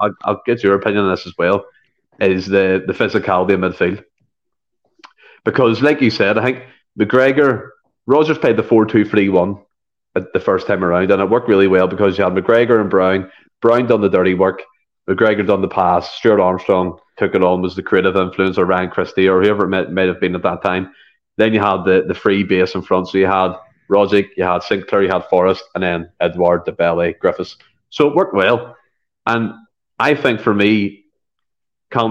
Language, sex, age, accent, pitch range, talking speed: English, male, 30-49, Irish, 95-110 Hz, 205 wpm